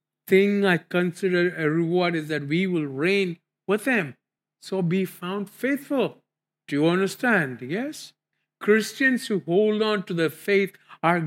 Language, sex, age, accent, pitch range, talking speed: English, male, 50-69, Indian, 155-215 Hz, 150 wpm